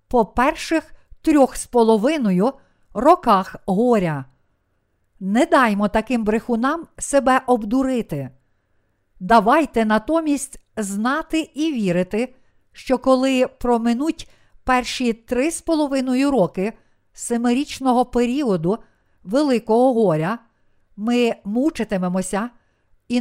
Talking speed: 85 wpm